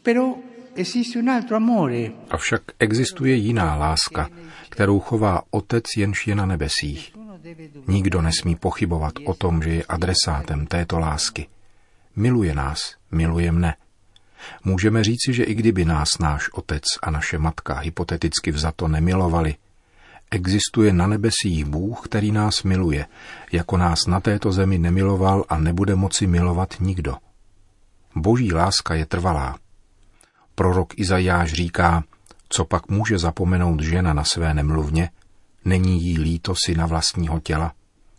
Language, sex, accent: Czech, male, native